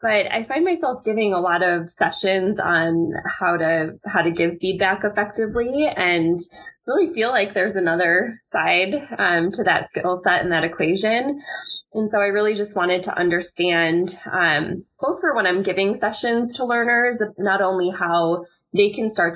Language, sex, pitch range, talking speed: English, female, 170-205 Hz, 170 wpm